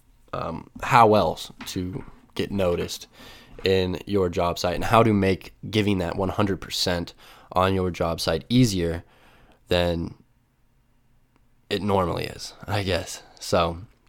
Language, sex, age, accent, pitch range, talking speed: English, male, 20-39, American, 90-120 Hz, 125 wpm